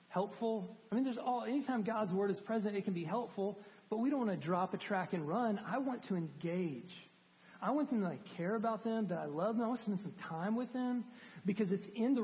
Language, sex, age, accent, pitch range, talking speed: English, male, 40-59, American, 170-220 Hz, 250 wpm